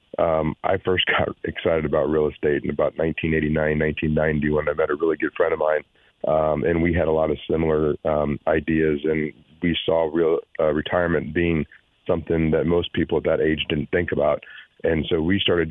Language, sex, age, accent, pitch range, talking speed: English, male, 40-59, American, 80-100 Hz, 200 wpm